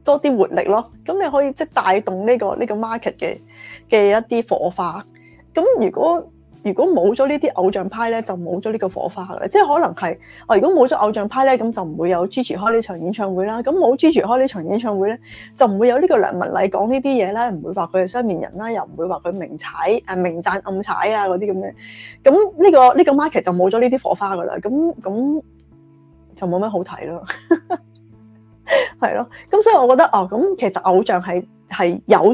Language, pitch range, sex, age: Chinese, 190-260 Hz, female, 20-39